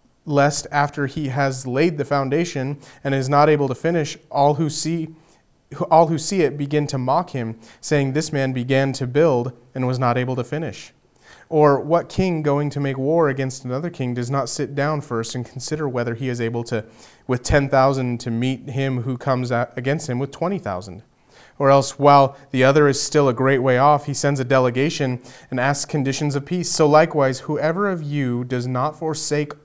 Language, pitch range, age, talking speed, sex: English, 125-150 Hz, 30-49, 195 wpm, male